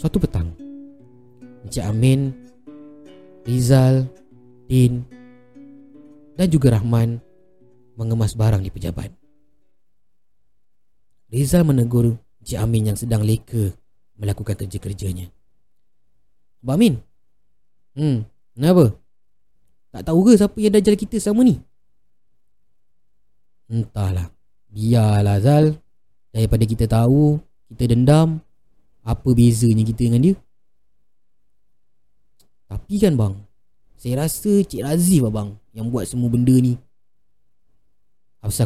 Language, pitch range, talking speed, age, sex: Malay, 105-160 Hz, 90 wpm, 30-49, male